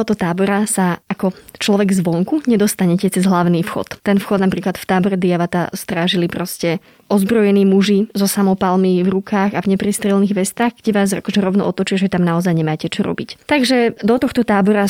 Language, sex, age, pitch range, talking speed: Slovak, female, 20-39, 190-220 Hz, 175 wpm